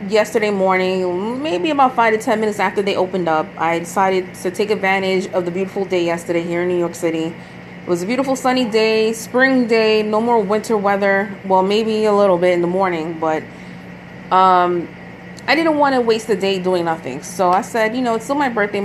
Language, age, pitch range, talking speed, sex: English, 20-39, 175-210 Hz, 215 wpm, female